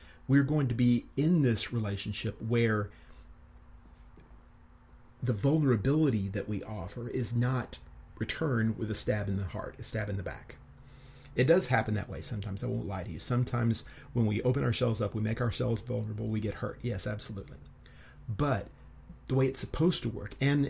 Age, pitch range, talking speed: 40-59, 100-125 Hz, 175 wpm